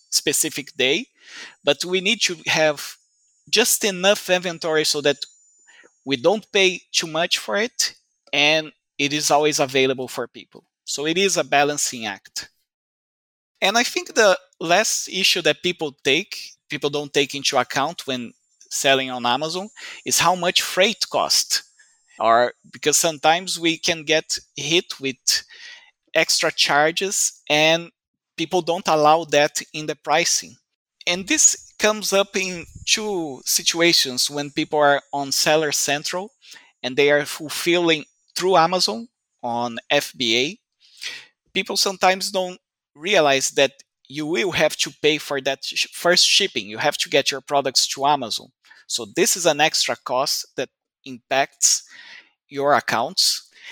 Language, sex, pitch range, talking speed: English, male, 145-185 Hz, 140 wpm